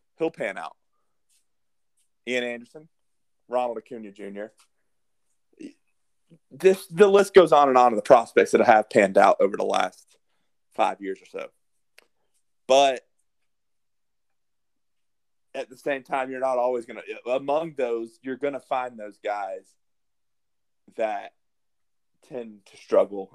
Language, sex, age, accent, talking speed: English, male, 30-49, American, 135 wpm